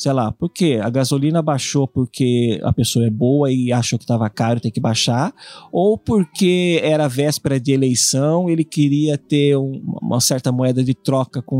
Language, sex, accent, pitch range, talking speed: Portuguese, male, Brazilian, 125-165 Hz, 185 wpm